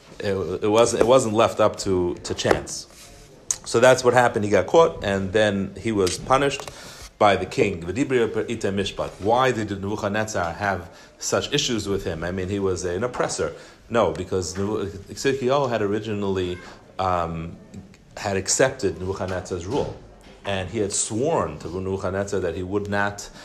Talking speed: 145 wpm